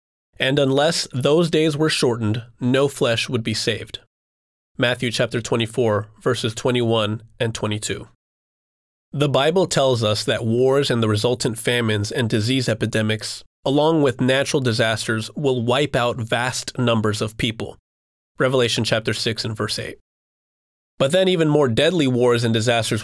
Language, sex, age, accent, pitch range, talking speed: English, male, 30-49, American, 110-140 Hz, 145 wpm